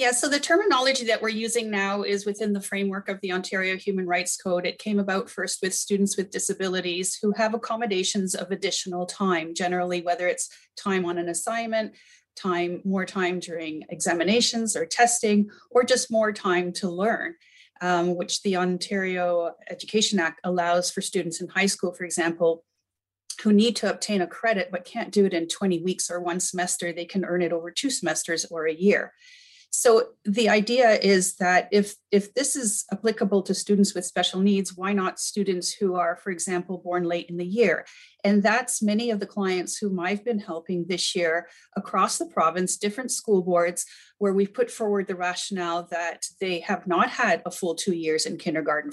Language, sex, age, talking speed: English, female, 30-49, 190 wpm